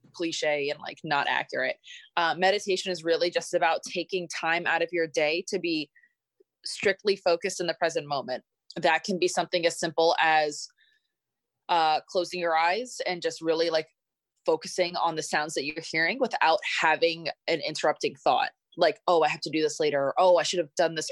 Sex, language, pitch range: female, English, 155-185 Hz